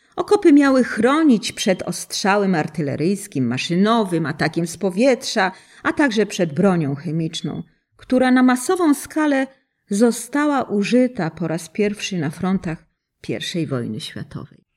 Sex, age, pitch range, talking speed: female, 40-59, 165-255 Hz, 120 wpm